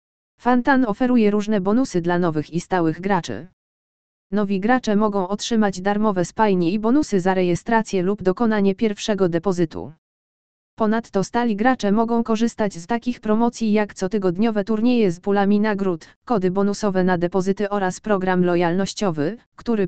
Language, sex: Polish, female